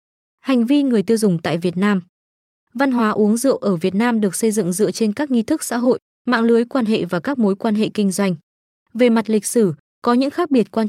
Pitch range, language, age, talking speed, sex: 195-240 Hz, Vietnamese, 20-39, 250 wpm, female